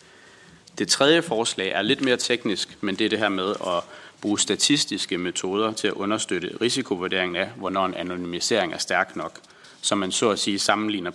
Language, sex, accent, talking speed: Danish, male, native, 185 wpm